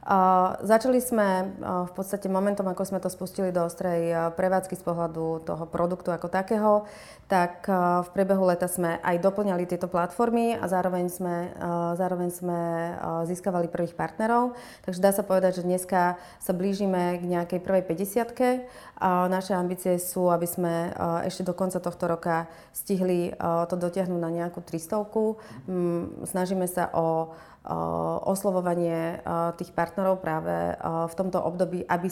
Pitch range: 170-185 Hz